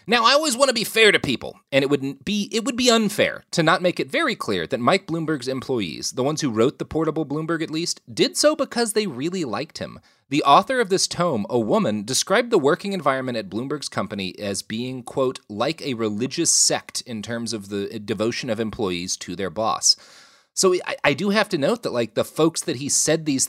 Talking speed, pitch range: 225 wpm, 120-195 Hz